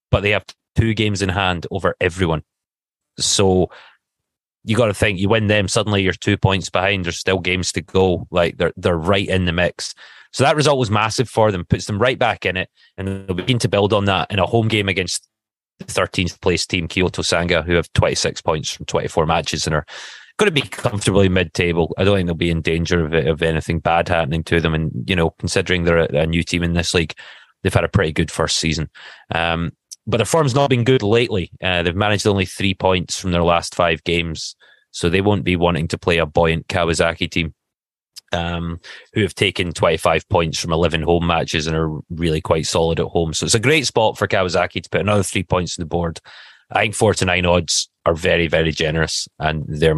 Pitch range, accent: 85-100 Hz, British